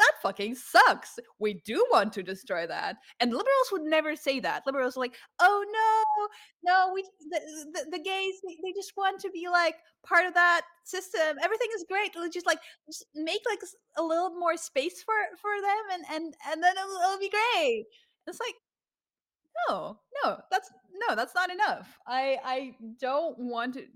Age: 20-39